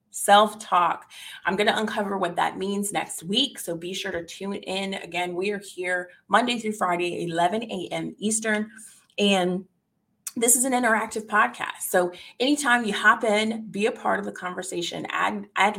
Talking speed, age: 170 wpm, 30-49